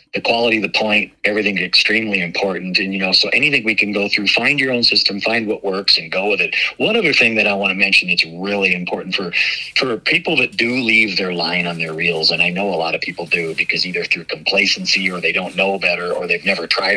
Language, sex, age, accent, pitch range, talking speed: English, male, 50-69, American, 95-120 Hz, 250 wpm